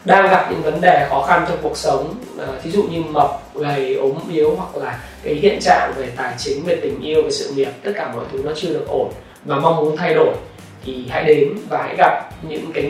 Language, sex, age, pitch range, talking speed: Vietnamese, male, 20-39, 155-235 Hz, 245 wpm